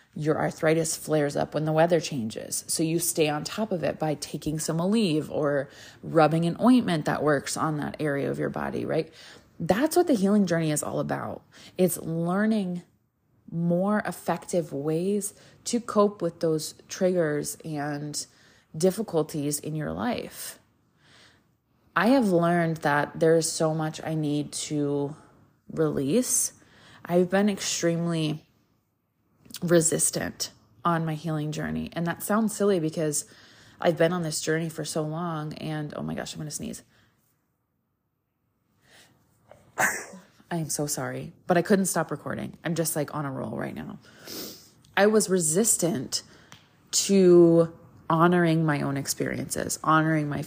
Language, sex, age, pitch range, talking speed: English, female, 20-39, 150-175 Hz, 145 wpm